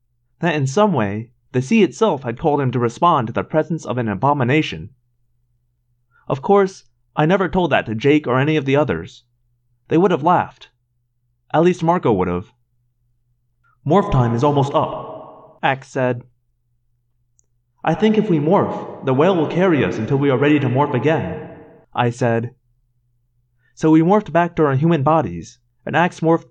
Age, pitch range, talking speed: 30-49, 120-165 Hz, 175 wpm